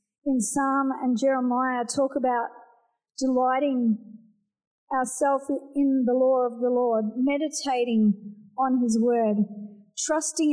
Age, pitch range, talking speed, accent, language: 40-59, 220-270 Hz, 110 wpm, Australian, English